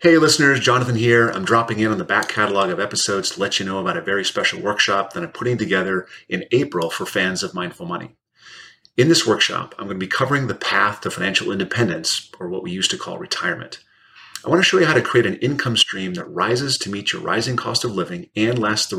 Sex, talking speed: male, 235 wpm